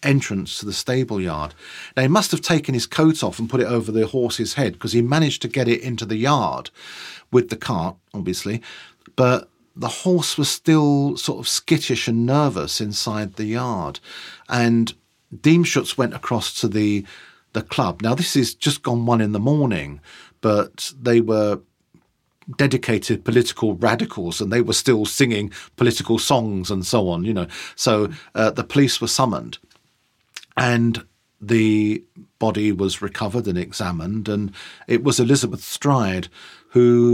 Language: English